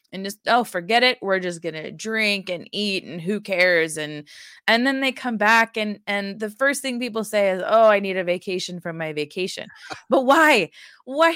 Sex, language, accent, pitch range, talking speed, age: female, English, American, 185-230 Hz, 210 wpm, 20-39